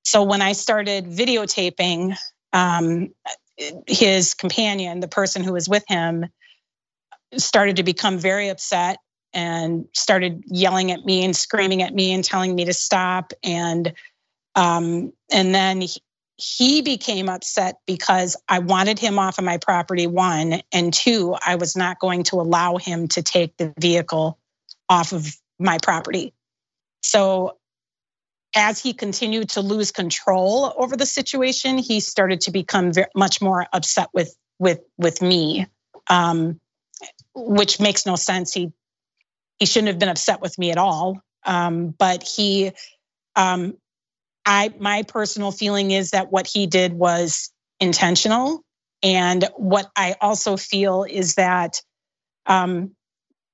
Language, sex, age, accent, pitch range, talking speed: English, female, 30-49, American, 175-205 Hz, 140 wpm